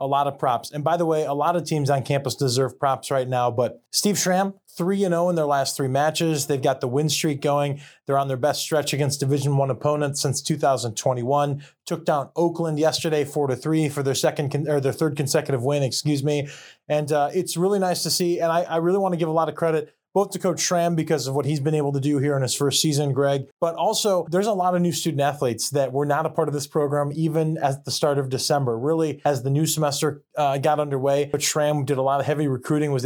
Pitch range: 140-160 Hz